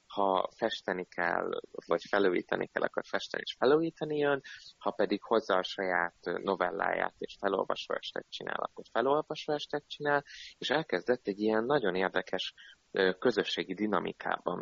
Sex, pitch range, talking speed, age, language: male, 95-135 Hz, 135 wpm, 20-39, Hungarian